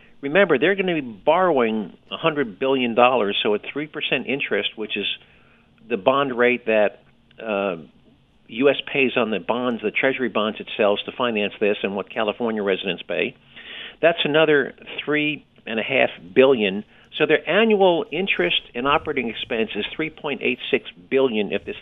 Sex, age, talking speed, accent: male, 50-69, 145 wpm, American